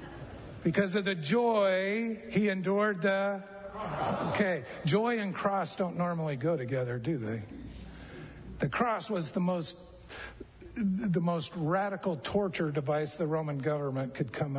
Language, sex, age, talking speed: English, male, 50-69, 130 wpm